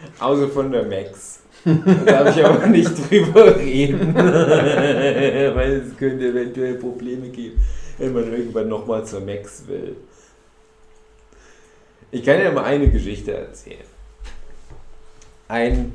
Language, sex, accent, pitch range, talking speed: German, male, German, 110-175 Hz, 125 wpm